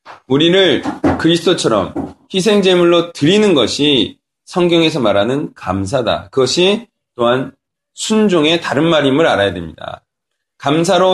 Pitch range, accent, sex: 145-215 Hz, native, male